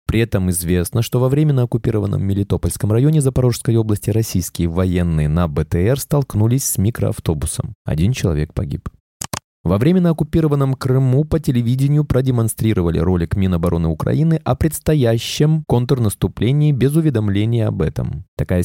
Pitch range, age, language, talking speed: 100-140 Hz, 20-39, Russian, 125 wpm